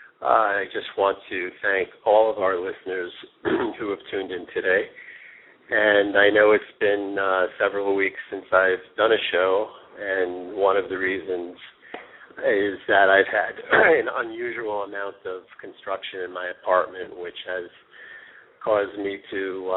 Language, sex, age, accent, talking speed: English, male, 50-69, American, 150 wpm